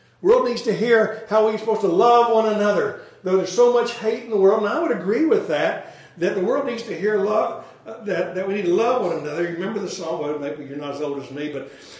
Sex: male